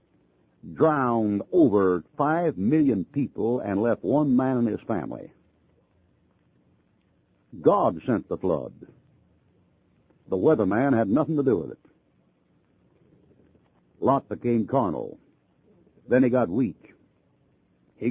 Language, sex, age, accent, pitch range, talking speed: English, male, 60-79, American, 115-140 Hz, 105 wpm